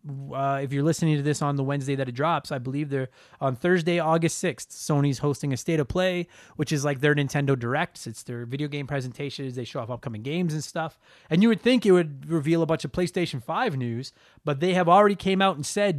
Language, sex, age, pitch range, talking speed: English, male, 30-49, 140-185 Hz, 240 wpm